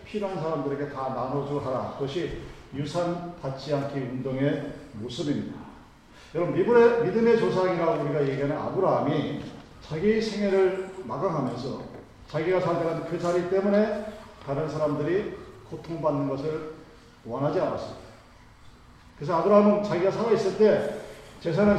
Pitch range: 145-195 Hz